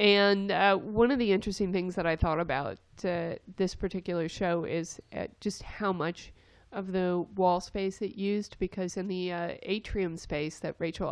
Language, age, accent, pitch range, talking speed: English, 30-49, American, 160-195 Hz, 185 wpm